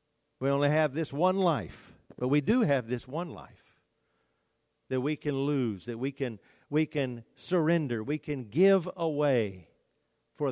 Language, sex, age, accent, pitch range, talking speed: English, male, 50-69, American, 110-145 Hz, 160 wpm